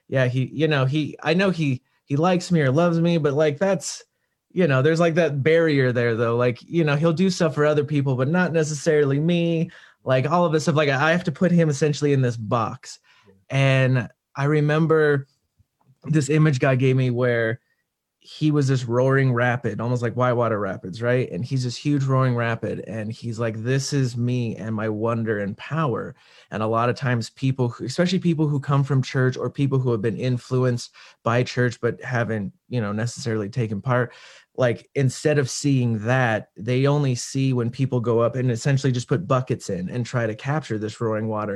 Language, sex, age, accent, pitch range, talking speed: English, male, 30-49, American, 120-145 Hz, 205 wpm